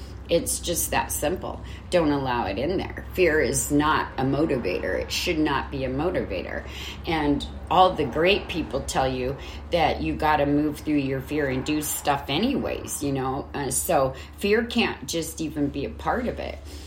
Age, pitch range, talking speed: 30-49, 130-180 Hz, 185 wpm